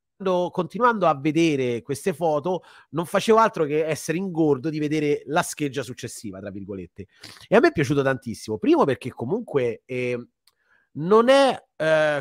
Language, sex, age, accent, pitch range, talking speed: Italian, male, 30-49, native, 115-155 Hz, 150 wpm